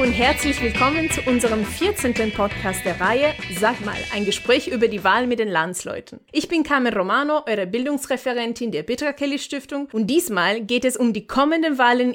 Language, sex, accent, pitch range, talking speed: German, female, German, 210-275 Hz, 185 wpm